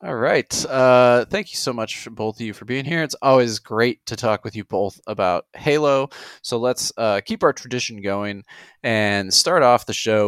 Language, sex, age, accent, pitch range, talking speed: English, male, 20-39, American, 105-125 Hz, 210 wpm